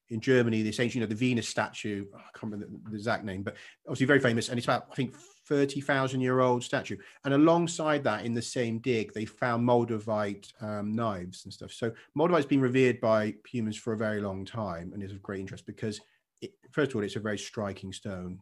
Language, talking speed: English, 225 wpm